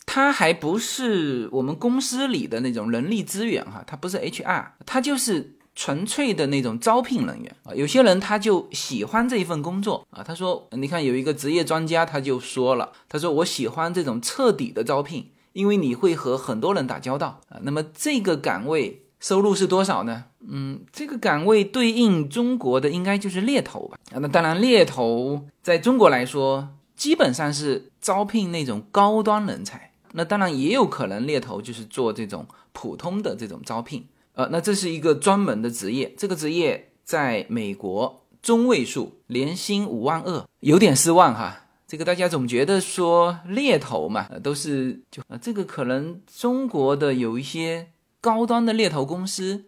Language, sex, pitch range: Chinese, male, 140-220 Hz